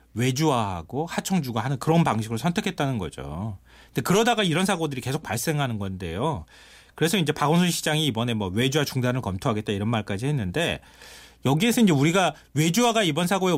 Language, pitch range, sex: Korean, 115-190 Hz, male